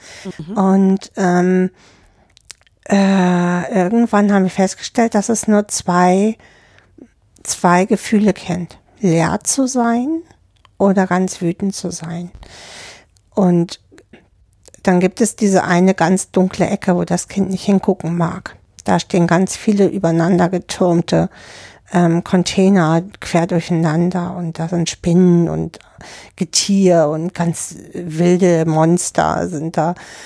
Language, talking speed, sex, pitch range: German, 115 wpm, female, 175-200 Hz